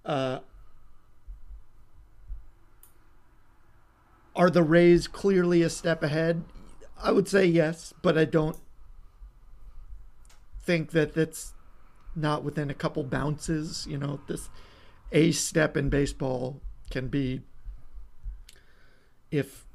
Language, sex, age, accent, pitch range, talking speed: English, male, 40-59, American, 125-160 Hz, 100 wpm